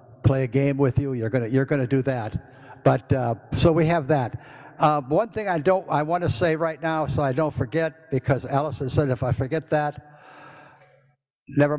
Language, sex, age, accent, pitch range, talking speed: English, male, 60-79, American, 130-160 Hz, 205 wpm